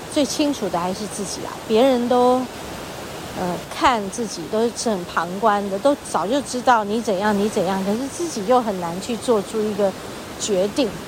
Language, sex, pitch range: Chinese, female, 205-265 Hz